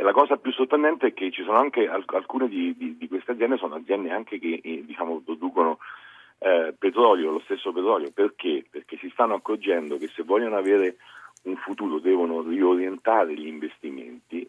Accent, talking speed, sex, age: native, 180 wpm, male, 40-59